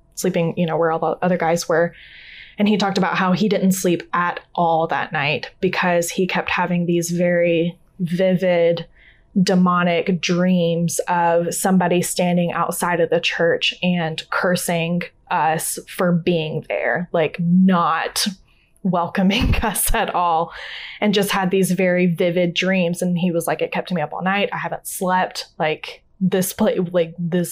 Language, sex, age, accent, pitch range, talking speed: English, female, 10-29, American, 170-190 Hz, 160 wpm